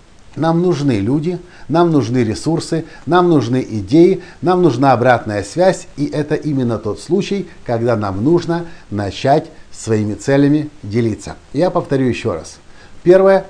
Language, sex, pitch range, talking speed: Russian, male, 115-165 Hz, 135 wpm